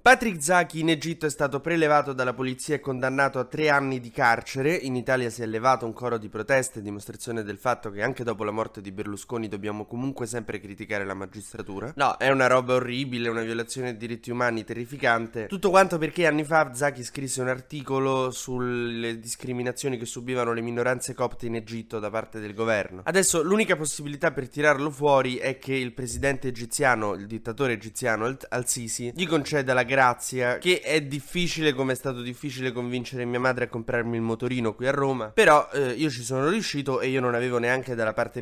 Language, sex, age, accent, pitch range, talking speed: Italian, male, 20-39, native, 120-145 Hz, 195 wpm